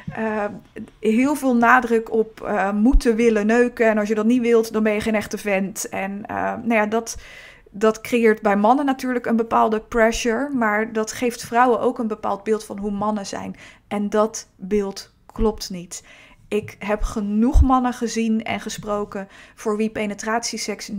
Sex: female